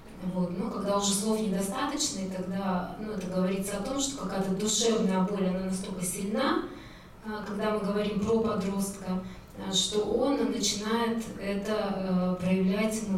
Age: 20-39